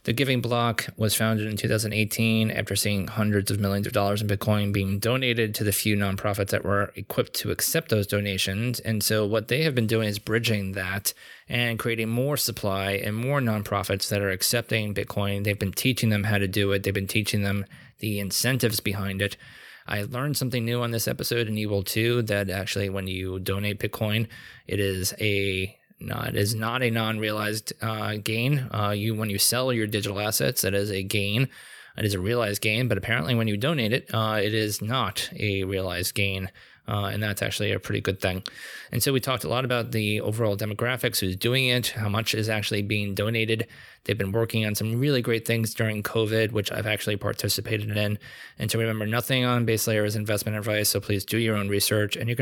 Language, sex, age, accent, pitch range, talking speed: English, male, 20-39, American, 100-115 Hz, 210 wpm